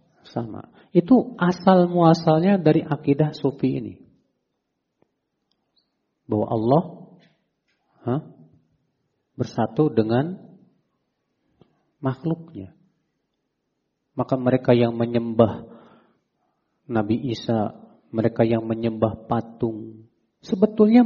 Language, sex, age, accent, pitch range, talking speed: Indonesian, male, 40-59, native, 115-165 Hz, 70 wpm